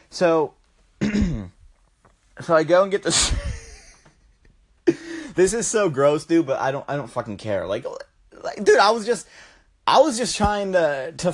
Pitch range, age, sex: 135-200 Hz, 30-49, male